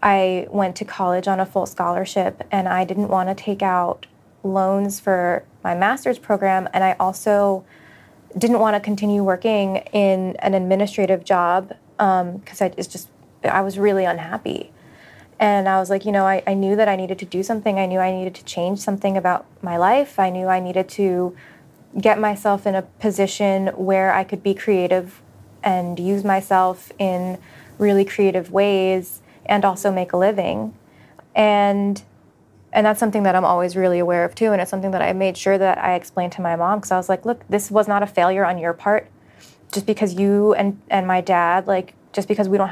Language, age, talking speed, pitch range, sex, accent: English, 20-39, 195 wpm, 185-205 Hz, female, American